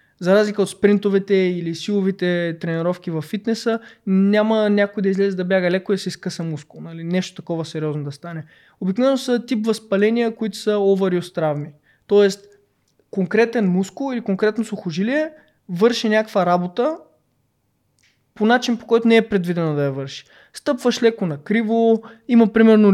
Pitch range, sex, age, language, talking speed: 175-225 Hz, male, 20-39, Bulgarian, 155 wpm